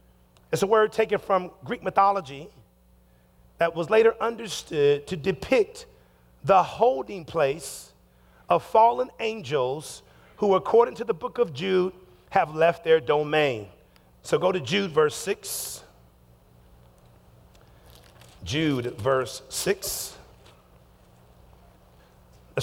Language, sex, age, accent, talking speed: English, male, 40-59, American, 105 wpm